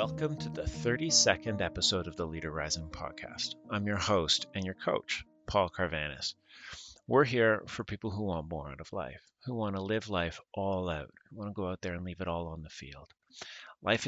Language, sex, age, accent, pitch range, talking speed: English, male, 30-49, American, 85-110 Hz, 210 wpm